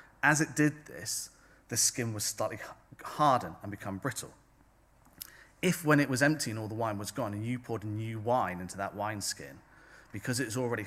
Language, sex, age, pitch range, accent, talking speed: English, male, 30-49, 100-120 Hz, British, 195 wpm